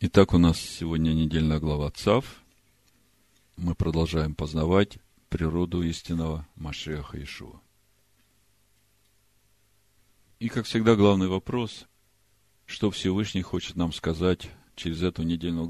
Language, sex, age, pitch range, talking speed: Russian, male, 50-69, 85-105 Hz, 105 wpm